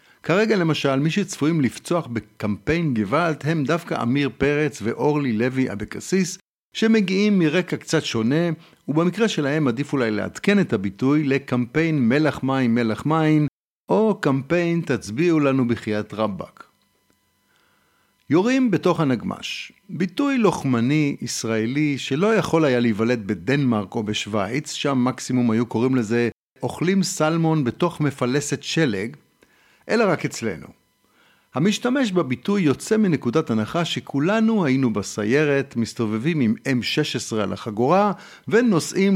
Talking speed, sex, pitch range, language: 115 wpm, male, 120-170 Hz, Hebrew